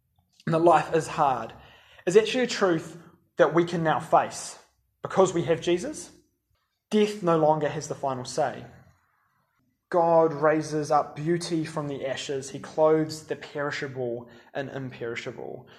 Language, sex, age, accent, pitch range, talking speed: English, male, 20-39, Australian, 140-170 Hz, 145 wpm